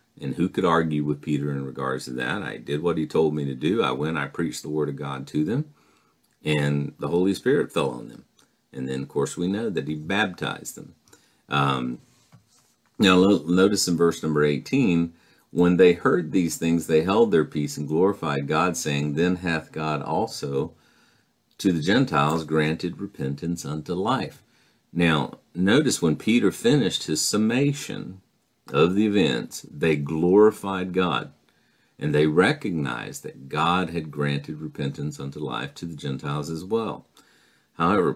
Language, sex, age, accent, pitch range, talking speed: English, male, 50-69, American, 75-95 Hz, 165 wpm